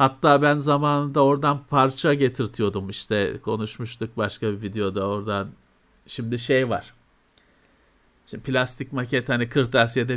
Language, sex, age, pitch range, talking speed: Turkish, male, 50-69, 120-195 Hz, 120 wpm